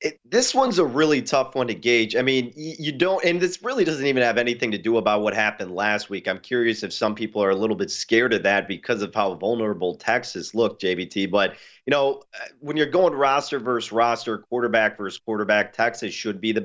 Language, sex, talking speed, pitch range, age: English, male, 225 wpm, 105-130 Hz, 30-49